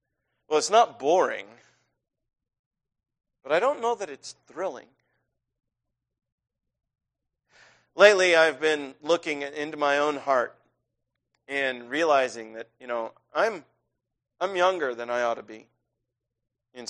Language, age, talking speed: English, 40-59, 115 wpm